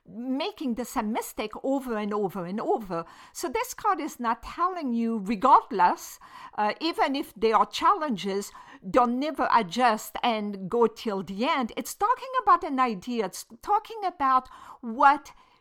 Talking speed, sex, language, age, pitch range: 165 wpm, female, English, 50-69, 210-295 Hz